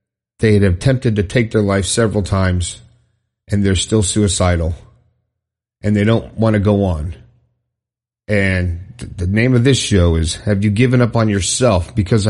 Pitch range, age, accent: 105-130 Hz, 40-59, American